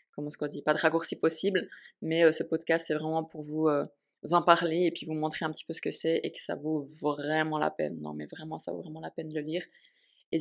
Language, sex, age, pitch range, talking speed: French, female, 20-39, 155-185 Hz, 280 wpm